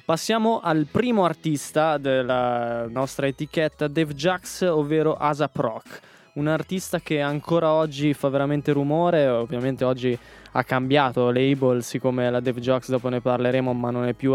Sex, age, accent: male, 20-39, native